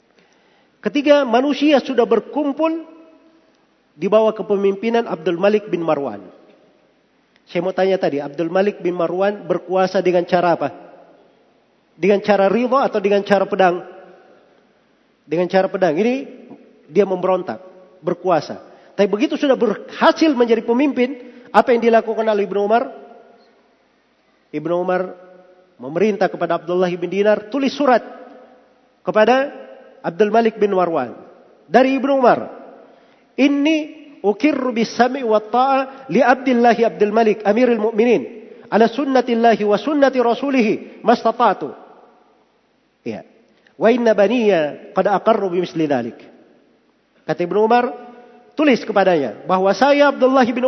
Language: Indonesian